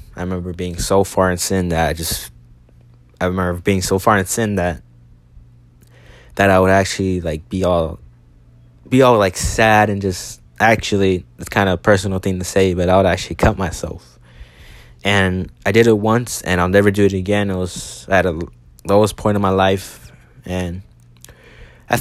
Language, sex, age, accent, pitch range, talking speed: English, male, 20-39, American, 85-105 Hz, 185 wpm